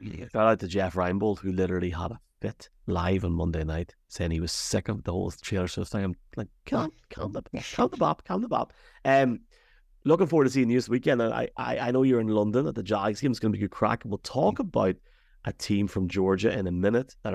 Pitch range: 95-120 Hz